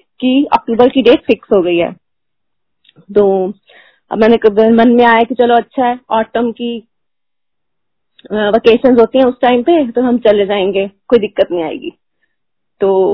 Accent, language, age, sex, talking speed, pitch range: native, Hindi, 20-39, female, 155 wpm, 210-255 Hz